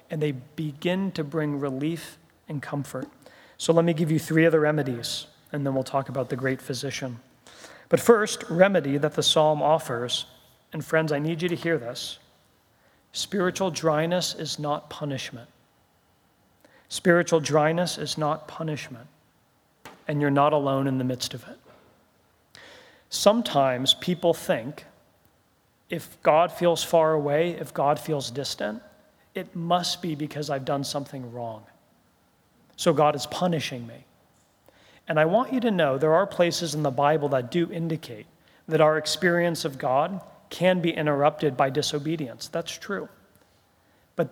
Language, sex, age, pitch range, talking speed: English, male, 40-59, 135-165 Hz, 150 wpm